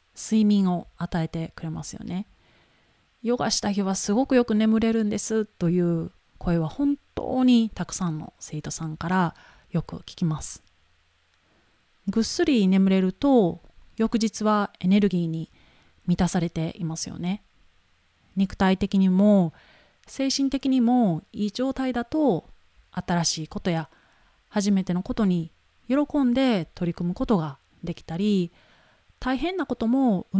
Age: 30-49